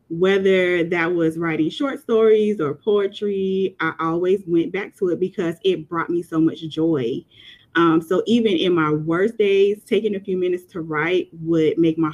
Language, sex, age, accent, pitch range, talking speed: English, female, 20-39, American, 160-185 Hz, 185 wpm